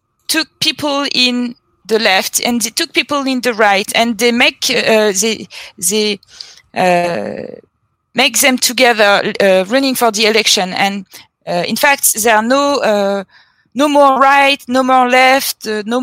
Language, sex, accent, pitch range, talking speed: Dutch, female, French, 210-270 Hz, 160 wpm